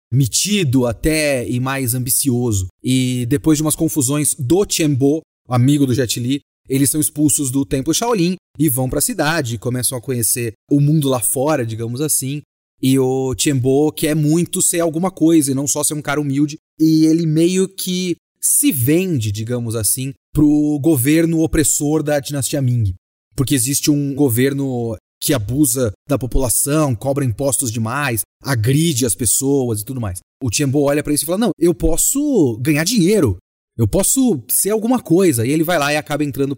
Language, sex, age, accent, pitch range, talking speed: Portuguese, male, 30-49, Brazilian, 125-160 Hz, 175 wpm